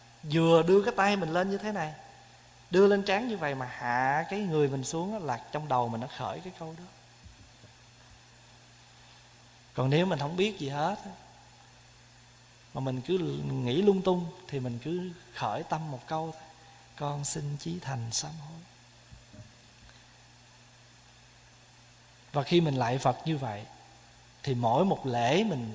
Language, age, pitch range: Vietnamese, 20-39, 120-165 Hz